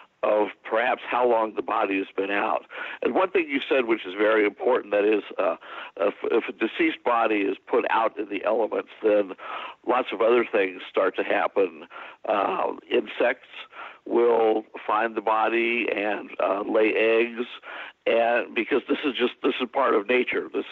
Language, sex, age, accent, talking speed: English, male, 70-89, American, 175 wpm